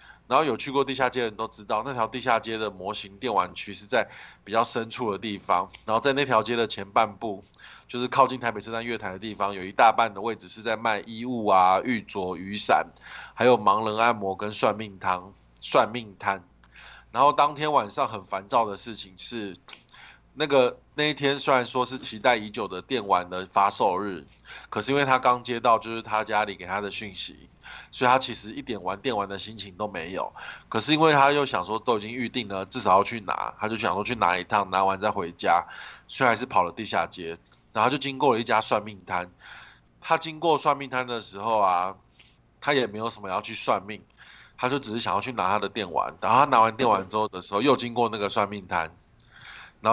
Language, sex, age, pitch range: Chinese, male, 20-39, 100-125 Hz